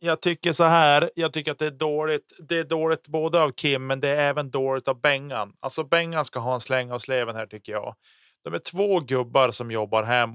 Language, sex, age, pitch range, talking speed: Swedish, male, 30-49, 110-145 Hz, 240 wpm